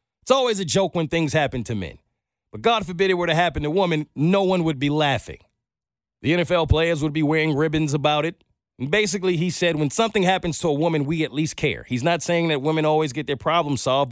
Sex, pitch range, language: male, 135-195 Hz, English